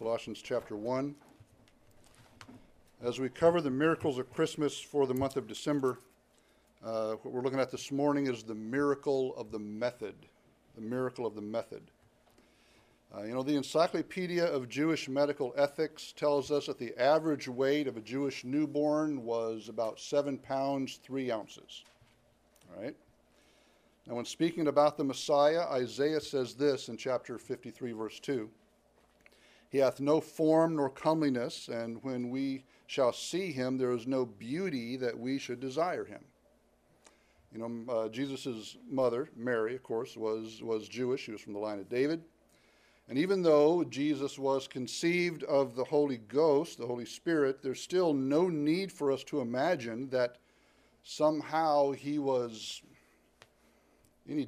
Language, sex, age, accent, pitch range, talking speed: English, male, 60-79, American, 120-145 Hz, 155 wpm